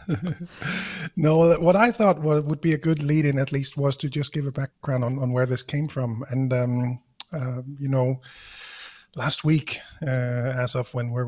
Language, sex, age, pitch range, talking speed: English, male, 30-49, 125-145 Hz, 190 wpm